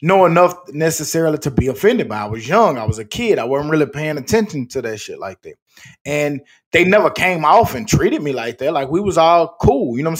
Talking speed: 240 wpm